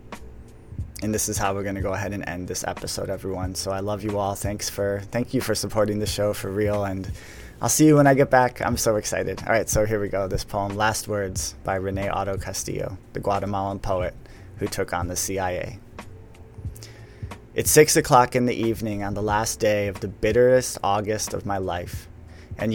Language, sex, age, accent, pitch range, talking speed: English, male, 20-39, American, 95-115 Hz, 210 wpm